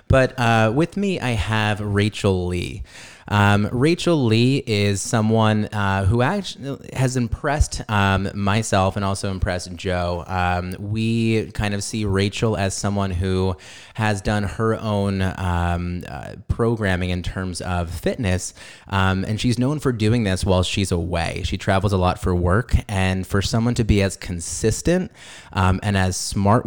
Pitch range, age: 90-110 Hz, 30-49